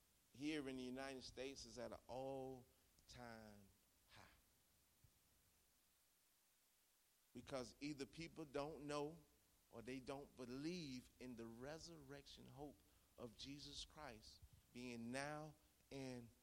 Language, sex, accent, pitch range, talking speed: English, male, American, 95-140 Hz, 110 wpm